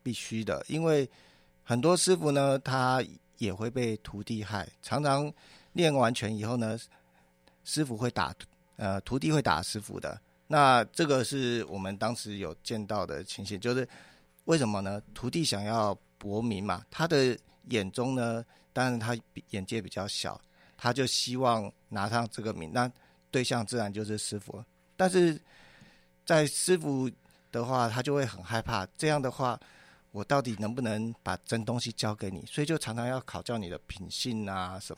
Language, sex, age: Chinese, male, 50-69